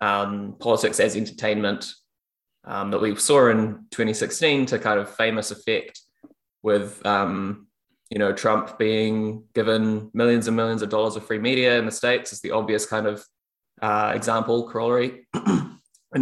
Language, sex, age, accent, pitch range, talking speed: English, male, 20-39, Australian, 105-115 Hz, 155 wpm